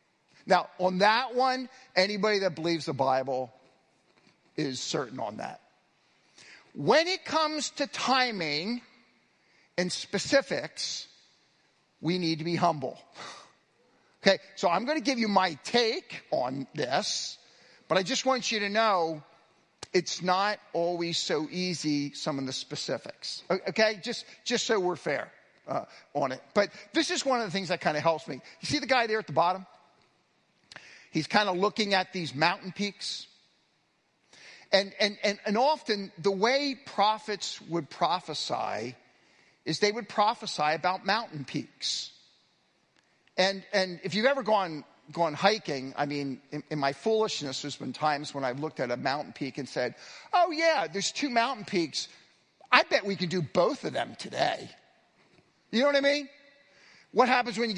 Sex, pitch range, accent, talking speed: male, 165-230 Hz, American, 160 wpm